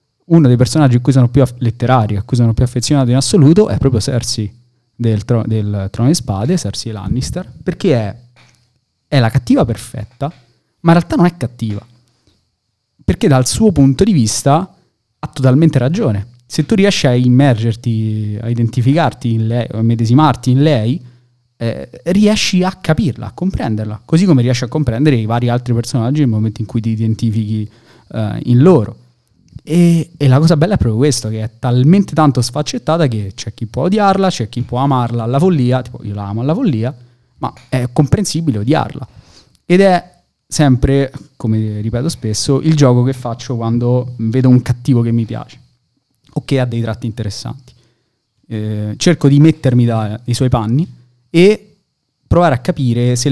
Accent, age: native, 20-39